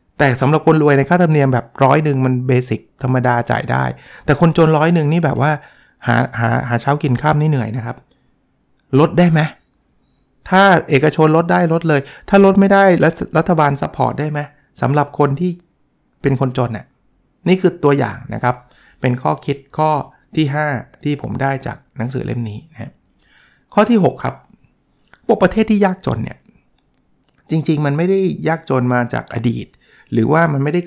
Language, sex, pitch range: Thai, male, 130-165 Hz